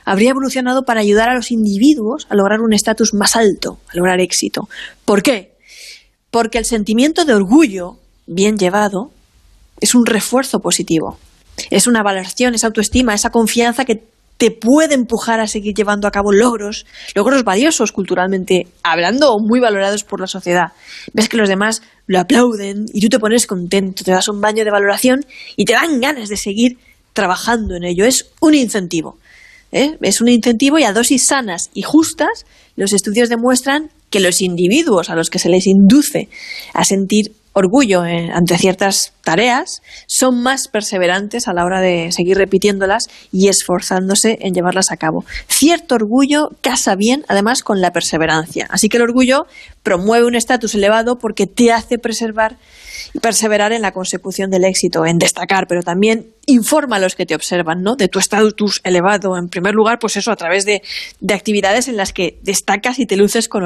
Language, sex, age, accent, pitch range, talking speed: Spanish, female, 20-39, Spanish, 185-240 Hz, 175 wpm